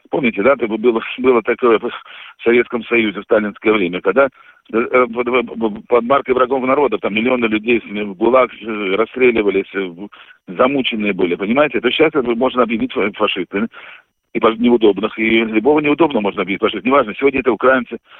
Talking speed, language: 140 wpm, Russian